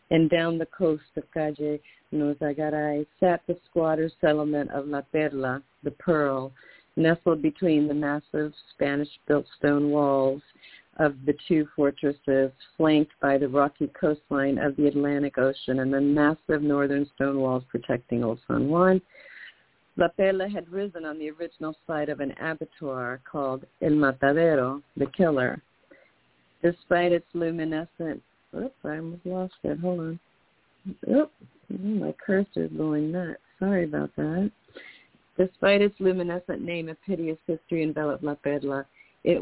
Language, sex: English, female